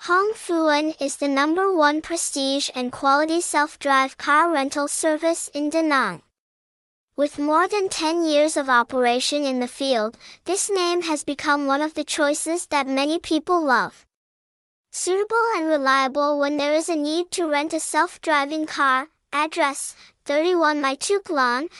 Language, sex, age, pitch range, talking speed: English, male, 10-29, 275-330 Hz, 150 wpm